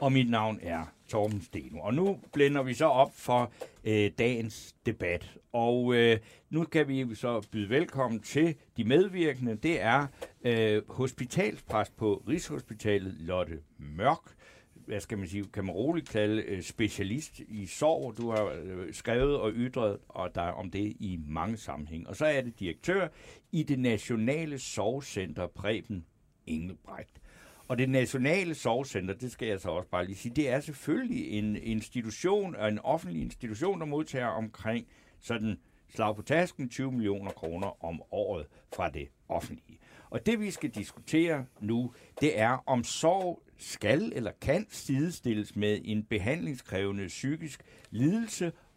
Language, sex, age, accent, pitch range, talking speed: Danish, male, 60-79, native, 105-140 Hz, 155 wpm